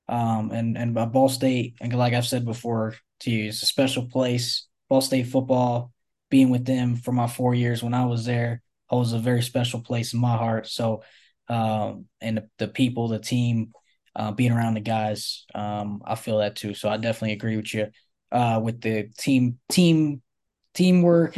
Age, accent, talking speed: 10-29, American, 195 wpm